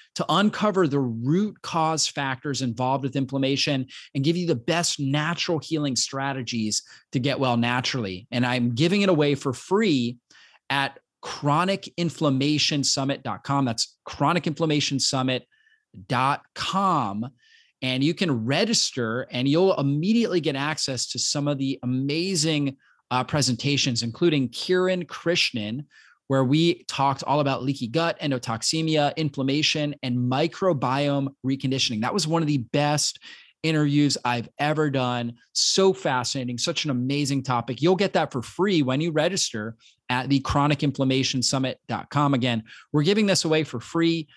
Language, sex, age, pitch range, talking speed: English, male, 30-49, 130-160 Hz, 130 wpm